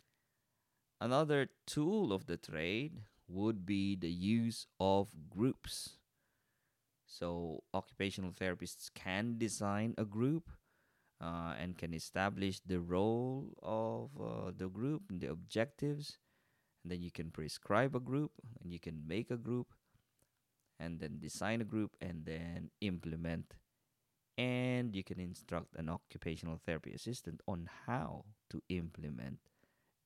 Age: 20-39